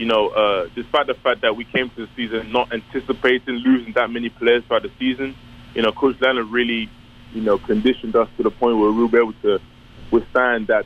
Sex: male